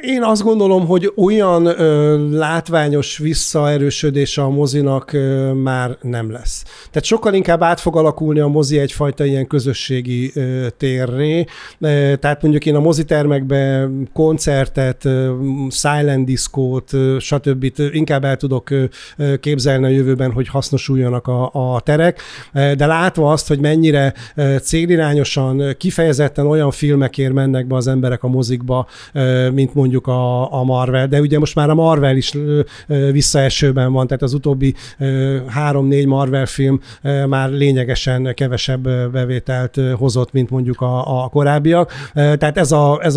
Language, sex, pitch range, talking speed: Hungarian, male, 130-155 Hz, 130 wpm